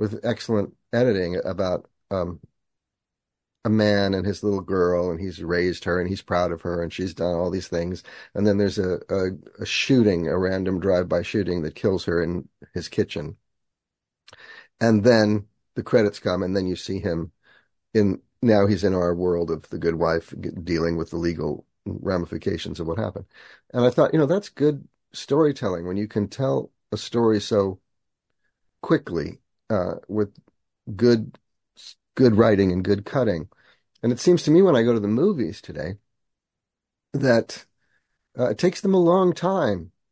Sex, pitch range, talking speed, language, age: male, 90-120 Hz, 170 wpm, English, 40-59